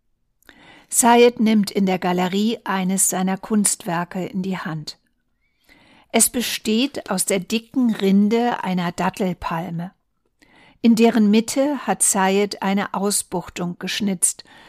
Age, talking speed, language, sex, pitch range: 60-79, 110 wpm, German, female, 185-220 Hz